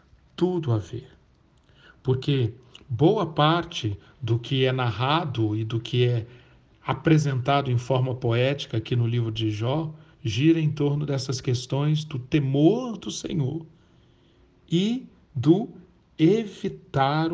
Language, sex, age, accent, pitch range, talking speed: Portuguese, male, 60-79, Brazilian, 125-165 Hz, 120 wpm